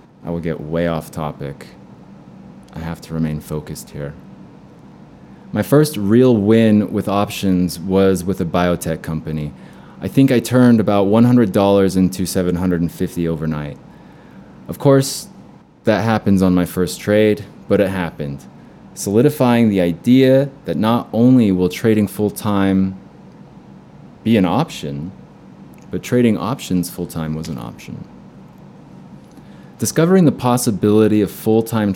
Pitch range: 85-105 Hz